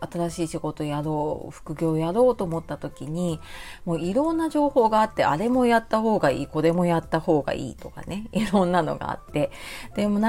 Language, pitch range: Japanese, 155-225 Hz